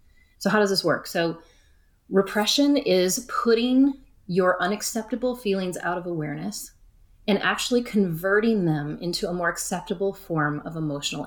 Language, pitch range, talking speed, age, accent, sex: English, 165-225 Hz, 140 wpm, 30-49, American, female